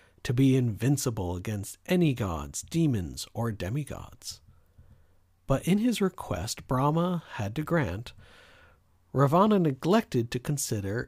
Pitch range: 100-140 Hz